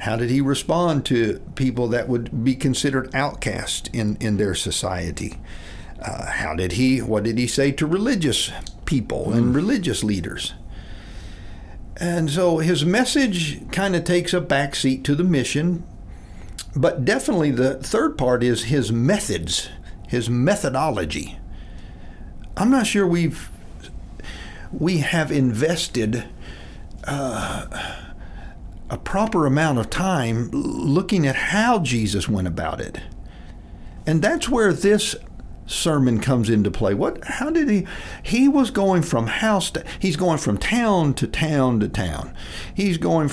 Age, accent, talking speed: 60-79, American, 135 wpm